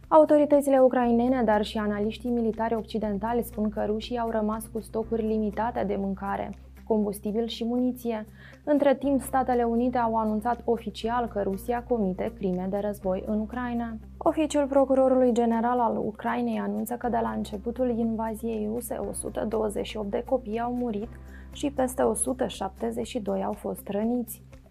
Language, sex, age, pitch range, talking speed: Romanian, female, 20-39, 215-245 Hz, 140 wpm